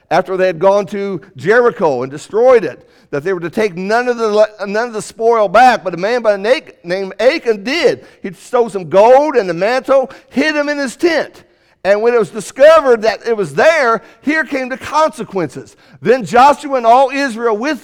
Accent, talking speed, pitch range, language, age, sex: American, 205 wpm, 210-280 Hz, English, 50-69, male